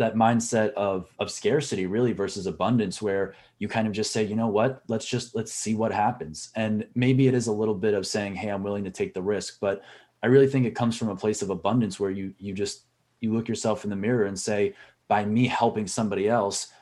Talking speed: 240 wpm